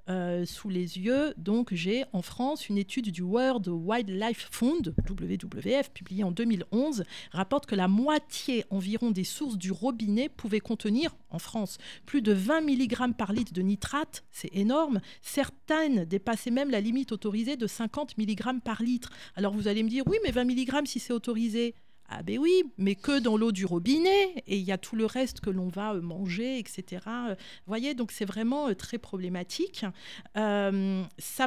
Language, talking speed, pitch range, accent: French, 185 wpm, 195-255 Hz, French